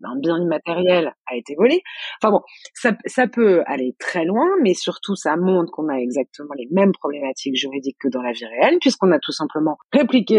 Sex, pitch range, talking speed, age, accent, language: female, 165-230 Hz, 200 wpm, 30-49, French, French